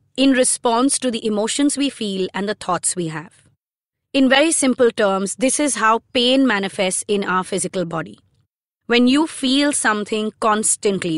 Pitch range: 195-260 Hz